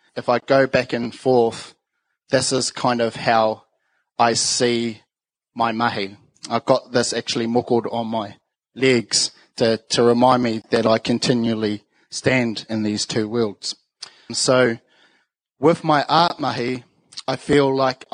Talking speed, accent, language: 140 wpm, Australian, English